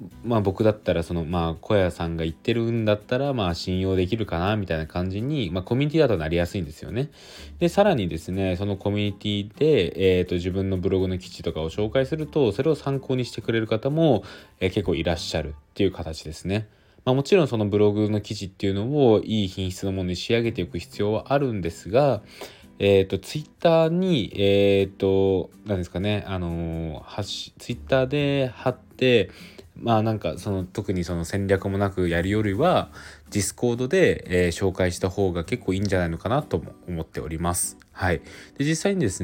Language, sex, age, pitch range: Japanese, male, 20-39, 90-110 Hz